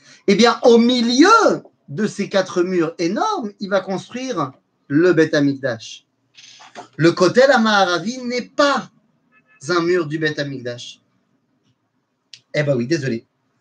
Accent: French